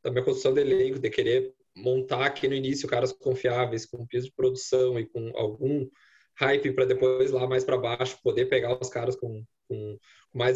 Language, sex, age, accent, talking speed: Portuguese, male, 20-39, Brazilian, 195 wpm